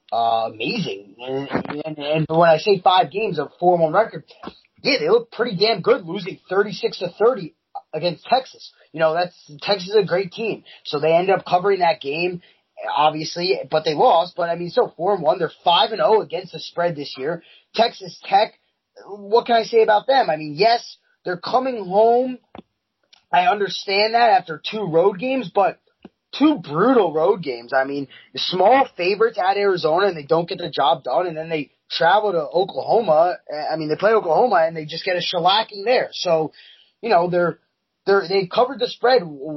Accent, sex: American, male